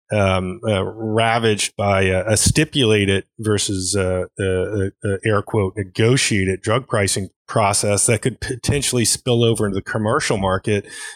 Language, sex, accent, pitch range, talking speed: English, male, American, 95-115 Hz, 125 wpm